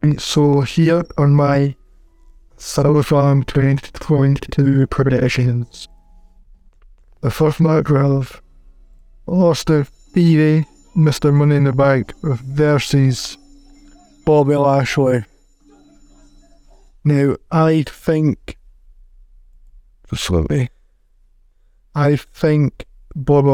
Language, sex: English, male